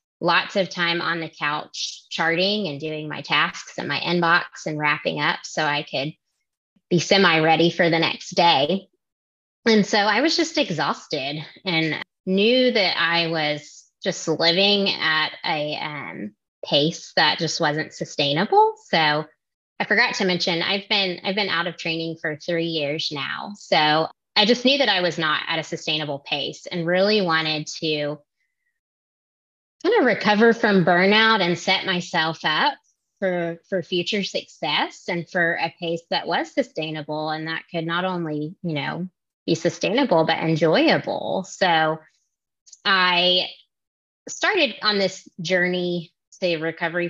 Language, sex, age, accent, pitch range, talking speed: English, female, 20-39, American, 160-195 Hz, 150 wpm